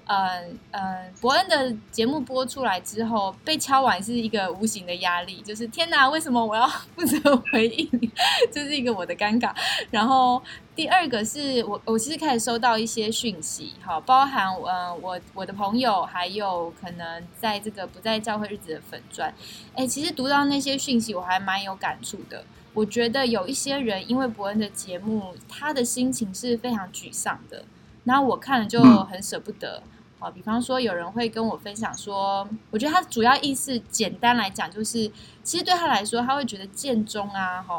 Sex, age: female, 10-29